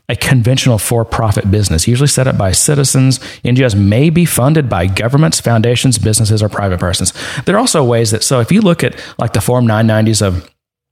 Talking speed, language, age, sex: 200 wpm, English, 30-49, male